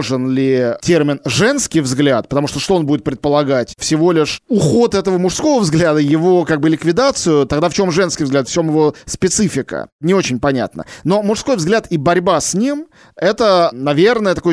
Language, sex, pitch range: Russian, male, 135-185 Hz